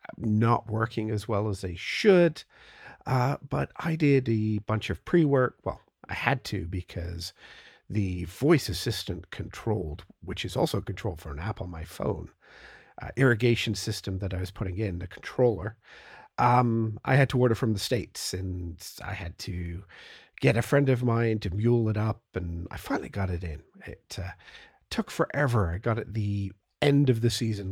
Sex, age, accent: male, 50-69, American